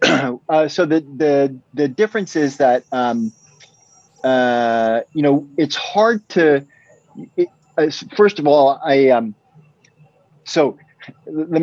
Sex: male